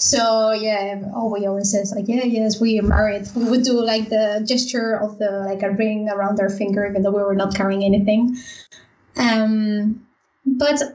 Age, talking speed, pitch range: 20-39, 195 wpm, 200-225 Hz